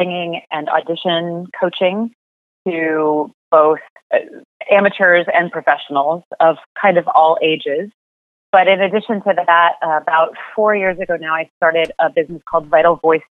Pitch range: 160-190 Hz